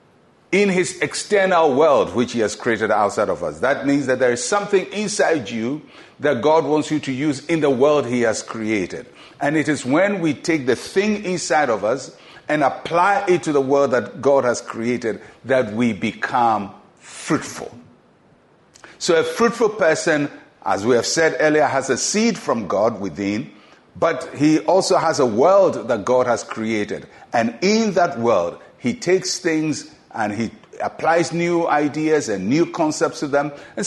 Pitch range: 120-170 Hz